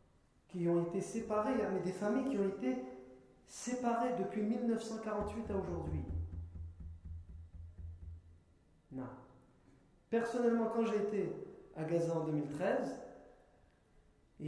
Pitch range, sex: 145-210 Hz, male